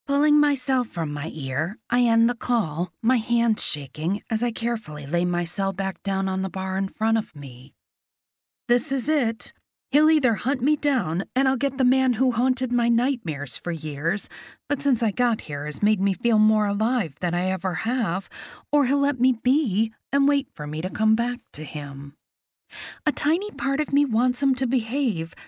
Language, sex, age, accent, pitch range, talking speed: English, female, 40-59, American, 180-260 Hz, 200 wpm